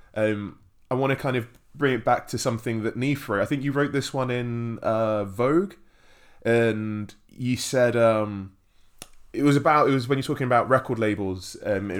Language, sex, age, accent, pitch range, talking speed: English, male, 20-39, British, 100-120 Hz, 190 wpm